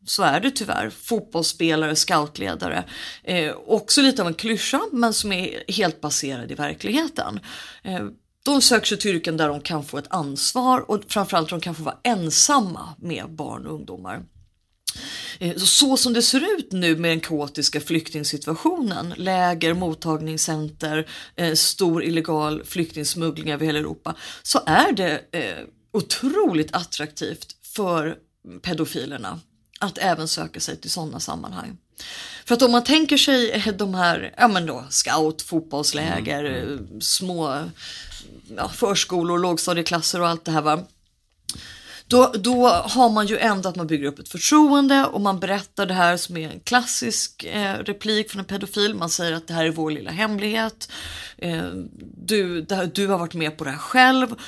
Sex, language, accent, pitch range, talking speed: female, English, Swedish, 155-220 Hz, 155 wpm